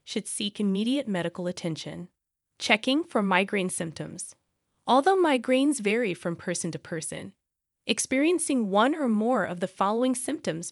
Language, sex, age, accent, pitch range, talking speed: English, female, 20-39, American, 180-250 Hz, 135 wpm